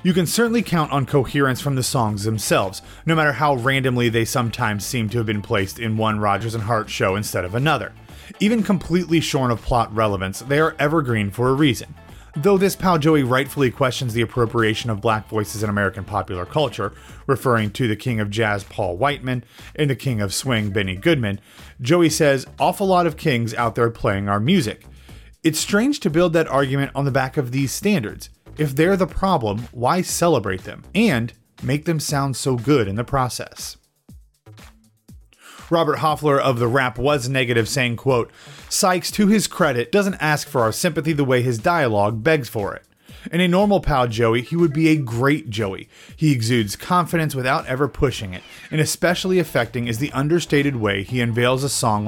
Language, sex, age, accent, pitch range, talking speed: English, male, 30-49, American, 110-155 Hz, 190 wpm